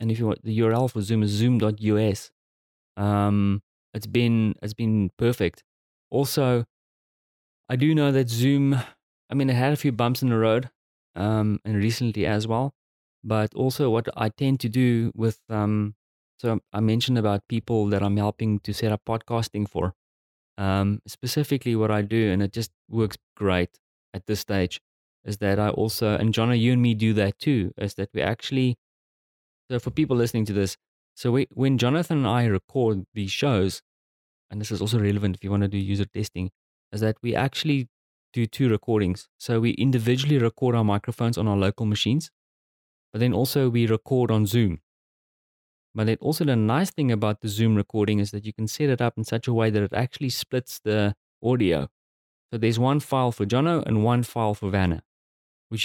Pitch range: 100-120 Hz